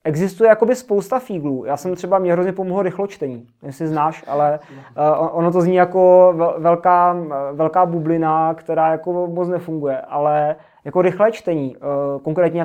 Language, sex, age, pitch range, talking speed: Czech, male, 20-39, 155-185 Hz, 145 wpm